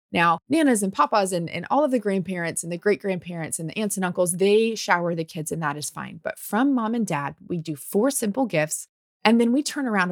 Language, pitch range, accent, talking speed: English, 165-210 Hz, American, 245 wpm